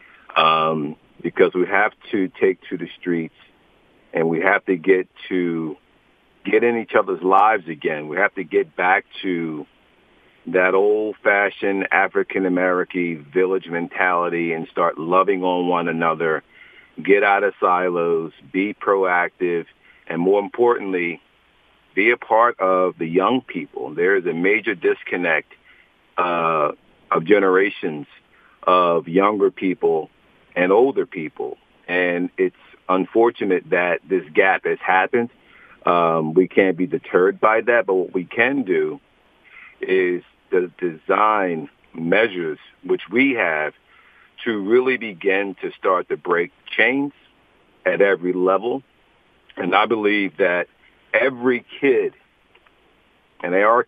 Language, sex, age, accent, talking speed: English, male, 50-69, American, 130 wpm